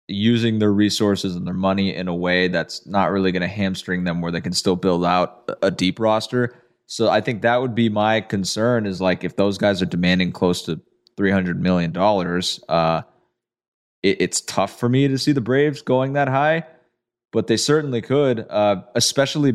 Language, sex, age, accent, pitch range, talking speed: English, male, 20-39, American, 90-110 Hz, 195 wpm